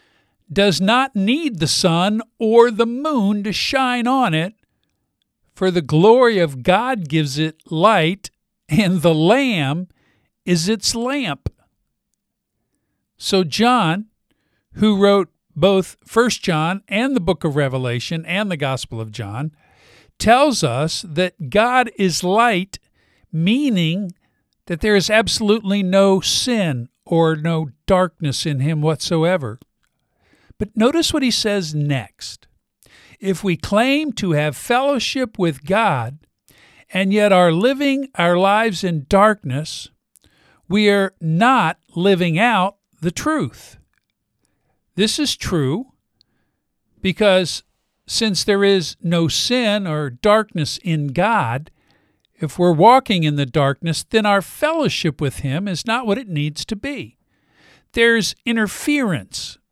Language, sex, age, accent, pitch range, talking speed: English, male, 50-69, American, 160-220 Hz, 125 wpm